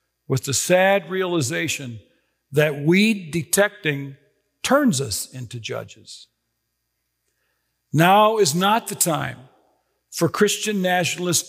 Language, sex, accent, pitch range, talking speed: English, male, American, 140-200 Hz, 95 wpm